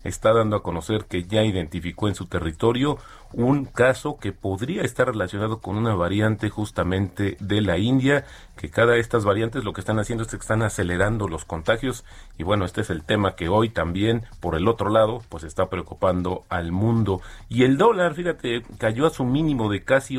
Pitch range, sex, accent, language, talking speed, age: 95-120 Hz, male, Mexican, Spanish, 195 wpm, 40-59